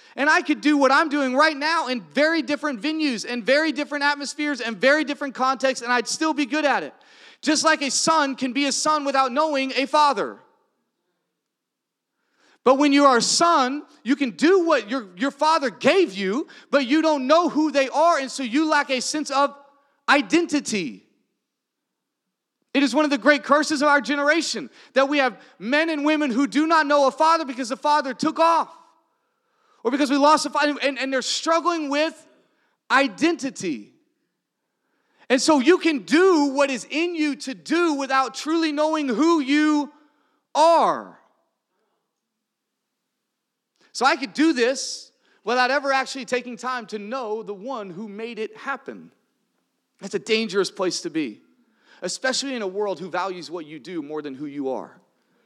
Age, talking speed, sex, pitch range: 30-49, 175 wpm, male, 255-310 Hz